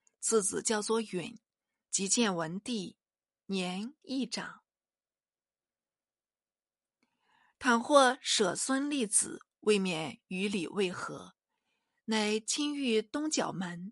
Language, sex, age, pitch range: Chinese, female, 50-69, 195-255 Hz